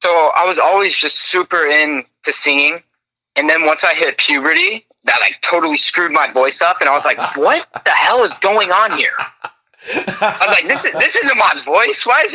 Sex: male